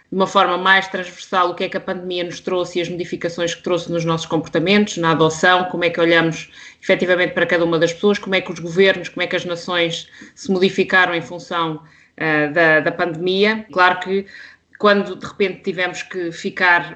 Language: Portuguese